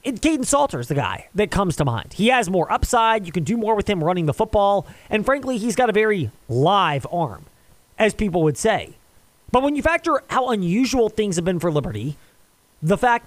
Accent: American